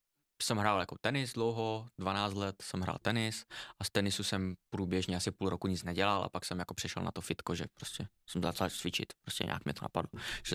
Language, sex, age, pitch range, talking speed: Czech, male, 20-39, 100-115 Hz, 220 wpm